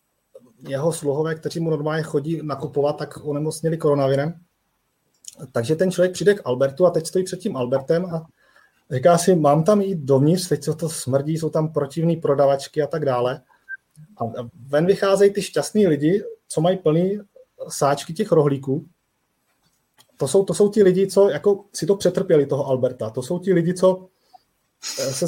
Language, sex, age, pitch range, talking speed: Czech, male, 30-49, 150-195 Hz, 165 wpm